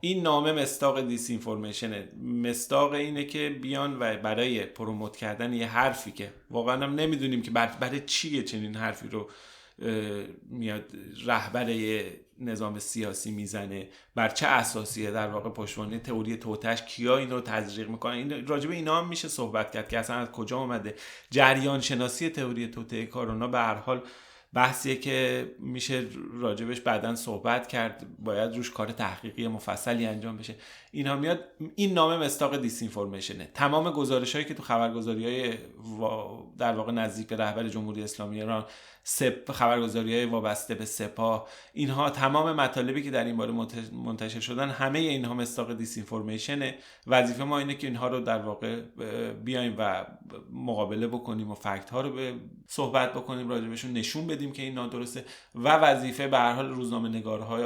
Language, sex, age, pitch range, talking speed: Persian, male, 30-49, 110-130 Hz, 155 wpm